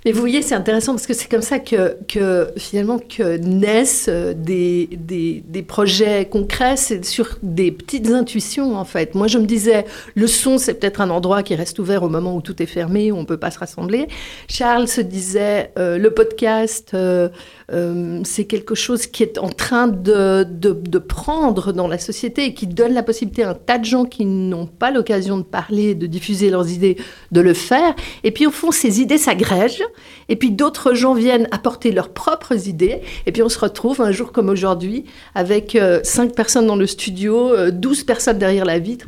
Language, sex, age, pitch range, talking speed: French, female, 50-69, 190-245 Hz, 205 wpm